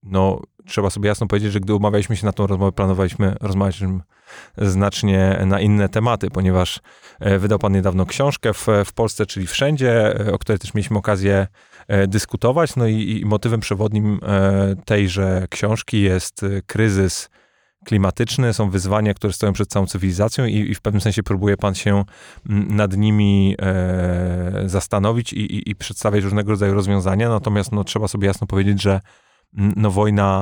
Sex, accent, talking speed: male, native, 150 wpm